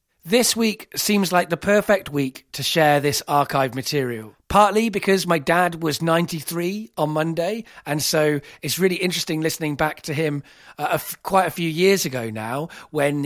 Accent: British